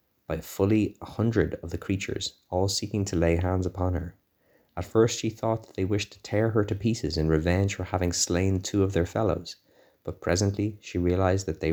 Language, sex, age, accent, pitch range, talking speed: English, male, 20-39, Irish, 80-95 Hz, 210 wpm